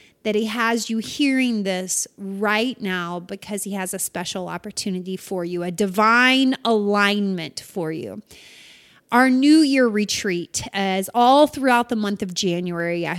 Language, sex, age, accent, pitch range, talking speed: English, female, 30-49, American, 195-255 Hz, 150 wpm